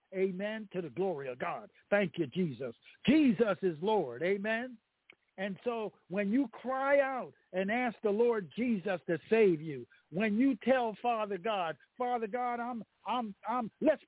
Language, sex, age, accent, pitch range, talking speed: English, male, 60-79, American, 190-240 Hz, 160 wpm